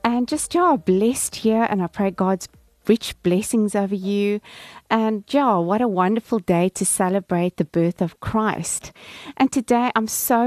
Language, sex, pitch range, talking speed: English, female, 180-225 Hz, 165 wpm